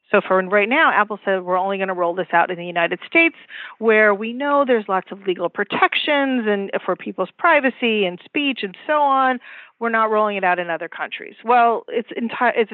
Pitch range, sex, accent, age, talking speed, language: 190-235 Hz, female, American, 40-59, 215 wpm, English